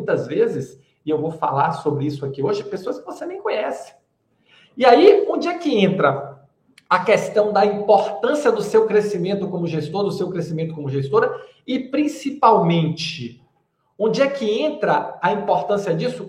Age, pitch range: 40-59, 145-210 Hz